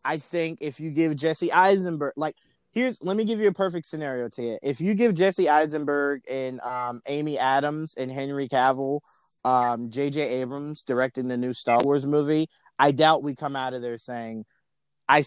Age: 30-49